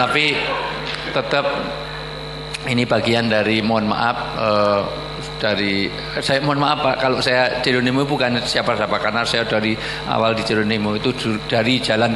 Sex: male